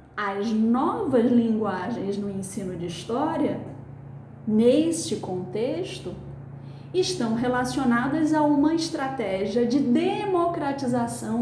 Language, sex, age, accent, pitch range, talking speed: Portuguese, female, 40-59, Brazilian, 220-310 Hz, 85 wpm